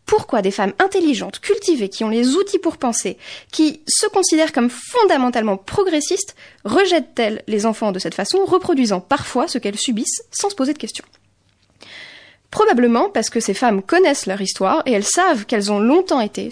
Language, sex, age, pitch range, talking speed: French, female, 20-39, 220-310 Hz, 175 wpm